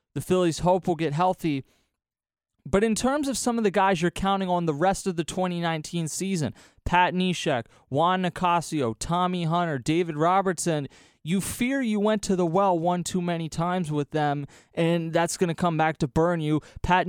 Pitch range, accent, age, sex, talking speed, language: 155-185 Hz, American, 30-49, male, 190 wpm, English